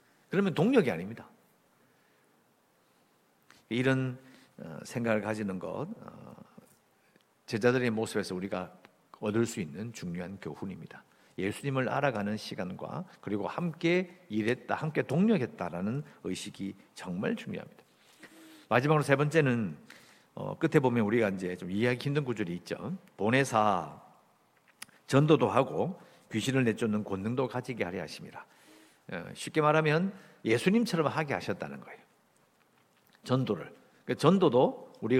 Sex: male